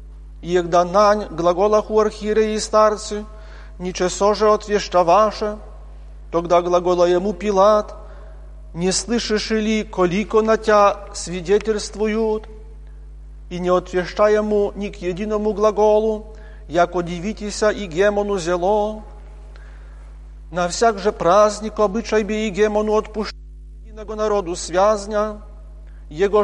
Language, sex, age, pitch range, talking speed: Polish, male, 40-59, 180-215 Hz, 105 wpm